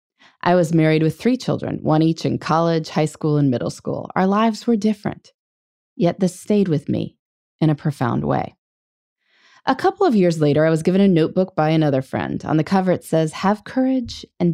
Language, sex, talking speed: English, female, 200 wpm